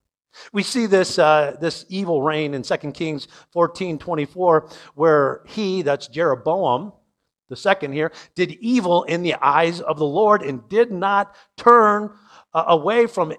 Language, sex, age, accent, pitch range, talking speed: English, male, 50-69, American, 155-215 Hz, 150 wpm